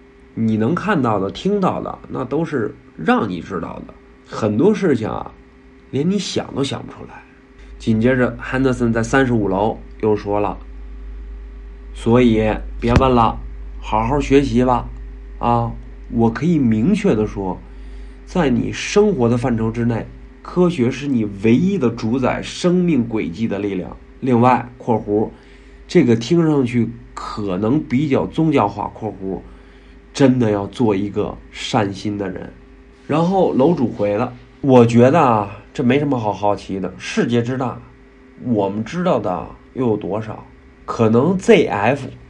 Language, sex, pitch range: Chinese, male, 100-130 Hz